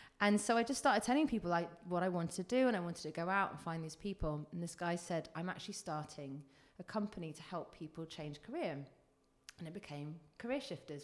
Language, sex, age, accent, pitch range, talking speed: English, female, 30-49, British, 155-190 Hz, 230 wpm